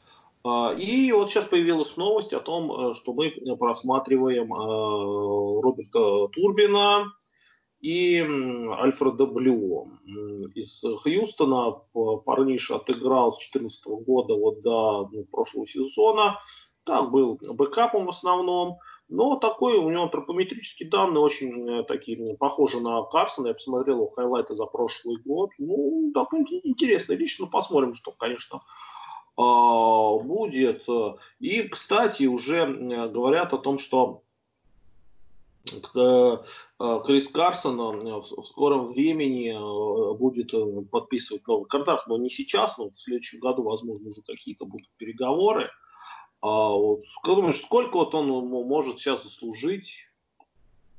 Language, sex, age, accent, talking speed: Russian, male, 30-49, native, 105 wpm